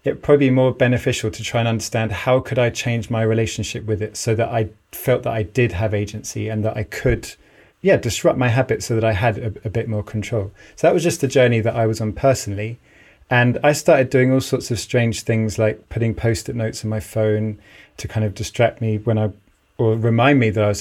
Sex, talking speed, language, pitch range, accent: male, 240 wpm, English, 110-130 Hz, British